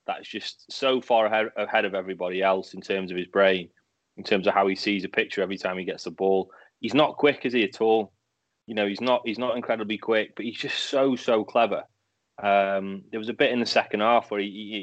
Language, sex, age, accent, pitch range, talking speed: English, male, 20-39, British, 100-125 Hz, 245 wpm